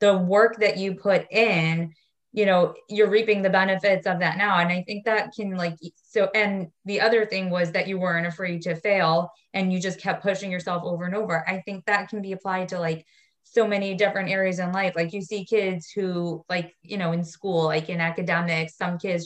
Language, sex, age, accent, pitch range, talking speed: English, female, 20-39, American, 175-200 Hz, 220 wpm